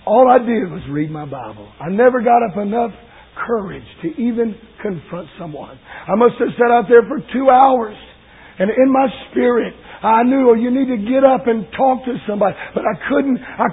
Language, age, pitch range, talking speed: English, 50-69, 200-285 Hz, 195 wpm